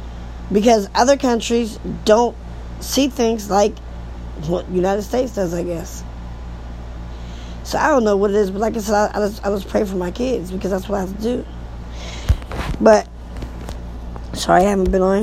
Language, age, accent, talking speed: English, 20-39, American, 175 wpm